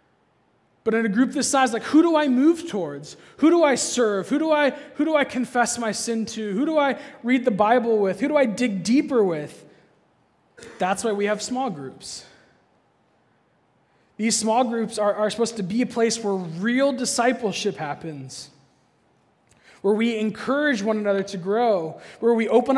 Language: English